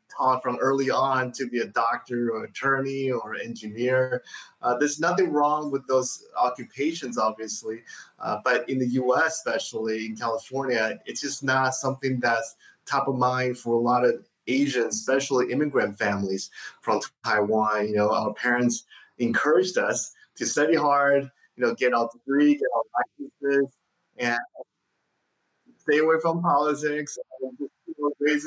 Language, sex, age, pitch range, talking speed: English, male, 30-49, 120-145 Hz, 145 wpm